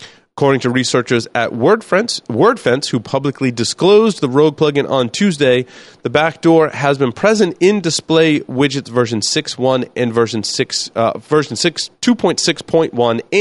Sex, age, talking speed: male, 30-49, 140 wpm